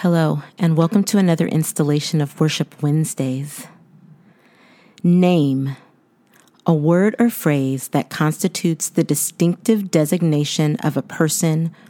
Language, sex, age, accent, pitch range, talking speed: English, female, 40-59, American, 150-175 Hz, 110 wpm